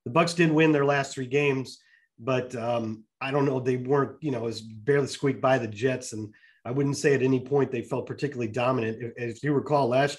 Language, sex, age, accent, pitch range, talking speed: English, male, 30-49, American, 120-145 Hz, 230 wpm